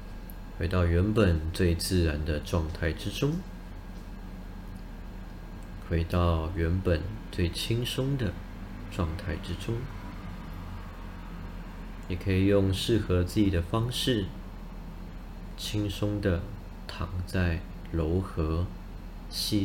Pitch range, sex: 90-100 Hz, male